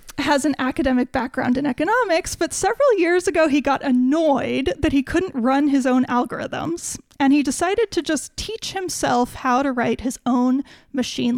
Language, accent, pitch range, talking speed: English, American, 255-295 Hz, 175 wpm